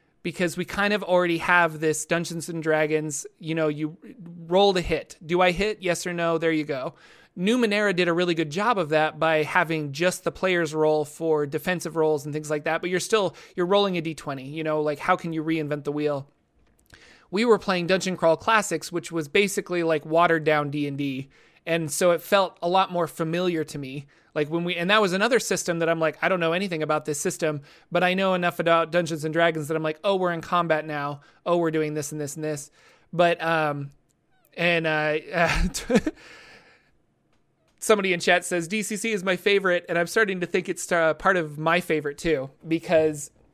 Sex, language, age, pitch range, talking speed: male, English, 30-49, 155-180 Hz, 210 wpm